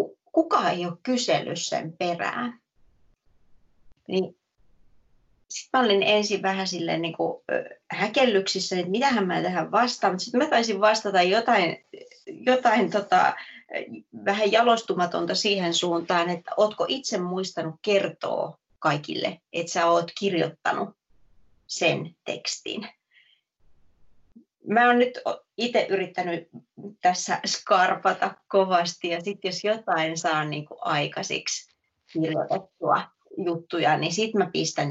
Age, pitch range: 30-49, 170-210 Hz